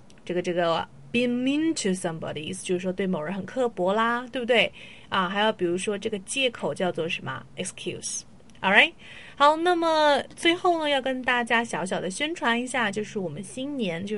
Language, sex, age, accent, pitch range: Chinese, female, 30-49, native, 185-240 Hz